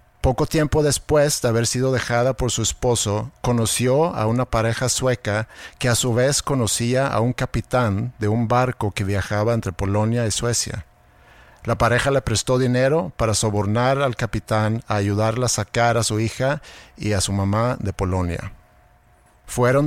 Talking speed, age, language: 165 wpm, 50-69, Spanish